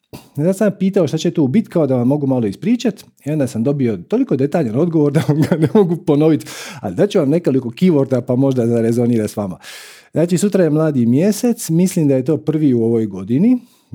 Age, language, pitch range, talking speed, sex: 40-59, Croatian, 125-190 Hz, 220 wpm, male